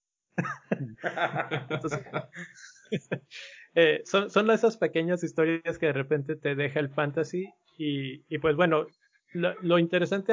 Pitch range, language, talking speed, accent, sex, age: 135-165 Hz, Spanish, 120 wpm, Mexican, male, 30-49